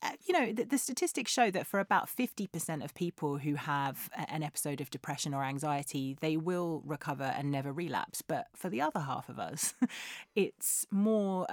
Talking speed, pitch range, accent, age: 175 wpm, 145-185 Hz, British, 30-49